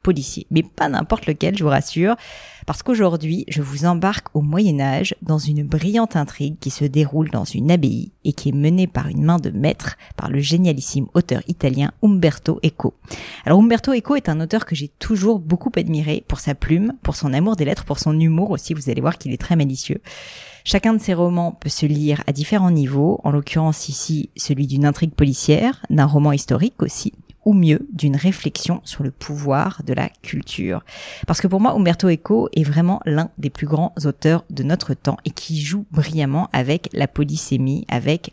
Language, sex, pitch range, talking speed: French, female, 145-175 Hz, 195 wpm